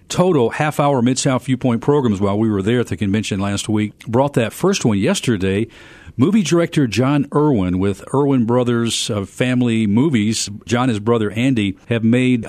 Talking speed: 170 wpm